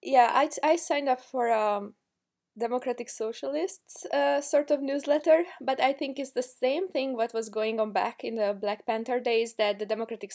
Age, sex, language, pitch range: 20-39, female, English, 195-255 Hz